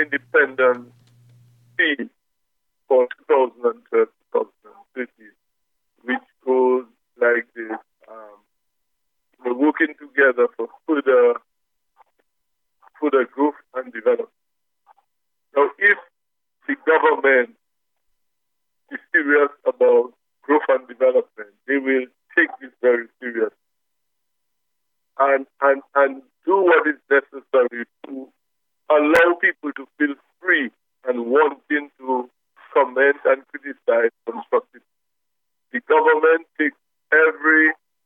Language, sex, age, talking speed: English, male, 50-69, 90 wpm